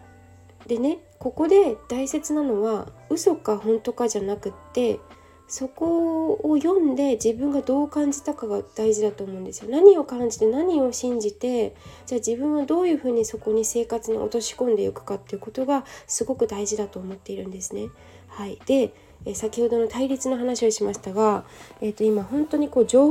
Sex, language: female, Japanese